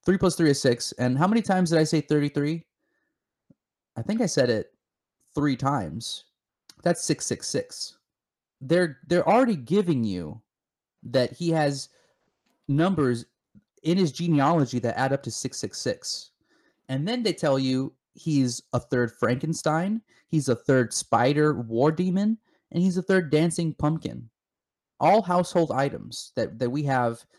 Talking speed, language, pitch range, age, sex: 145 wpm, English, 125-170 Hz, 30-49, male